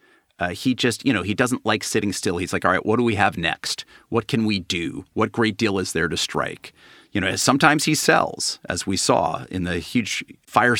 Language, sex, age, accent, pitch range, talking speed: English, male, 40-59, American, 95-115 Hz, 235 wpm